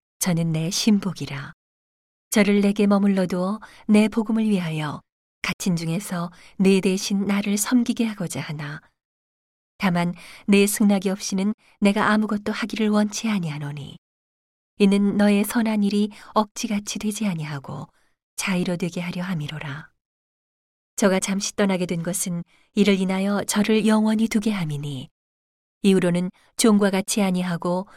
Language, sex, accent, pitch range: Korean, female, native, 170-210 Hz